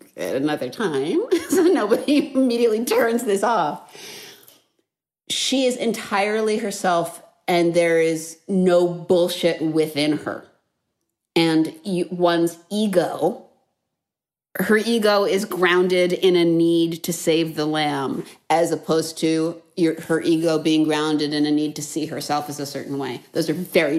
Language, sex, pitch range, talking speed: English, female, 160-195 Hz, 140 wpm